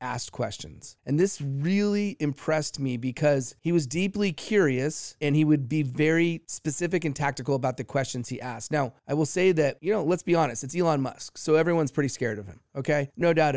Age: 30-49